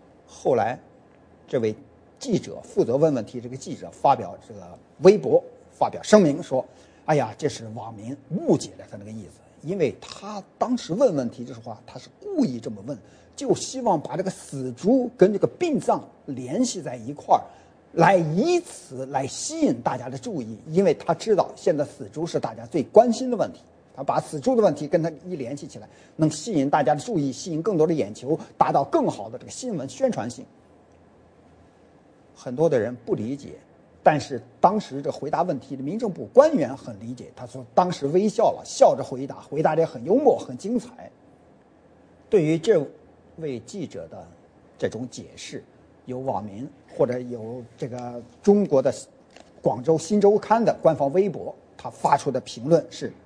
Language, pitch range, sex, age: English, 125-200 Hz, male, 50-69